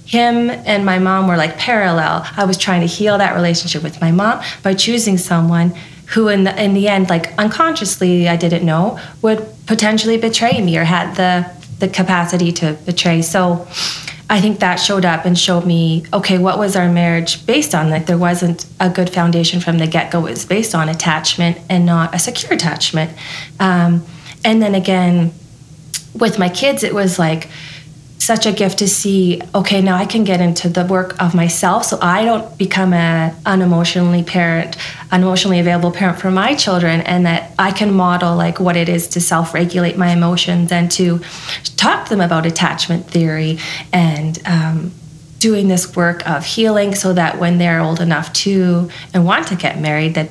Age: 30-49